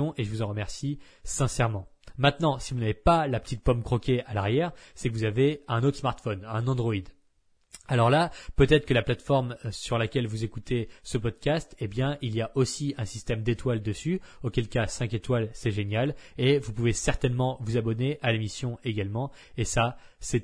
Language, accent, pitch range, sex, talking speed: French, French, 115-140 Hz, male, 195 wpm